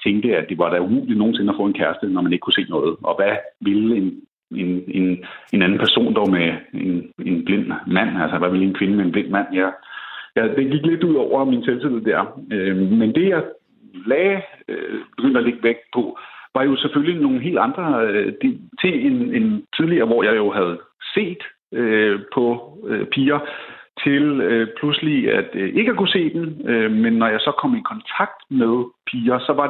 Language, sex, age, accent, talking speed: Danish, male, 60-79, native, 195 wpm